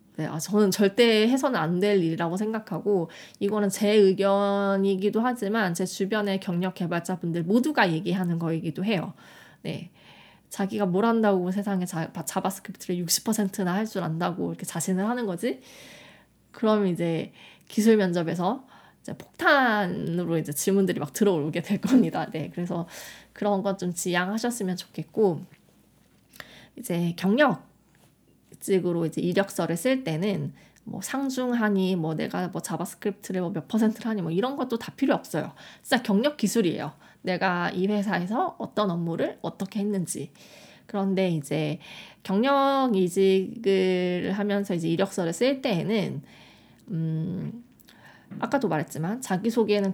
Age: 20-39